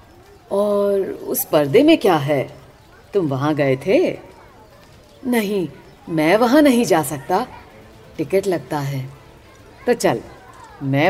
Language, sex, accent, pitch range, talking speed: Hindi, female, native, 140-215 Hz, 120 wpm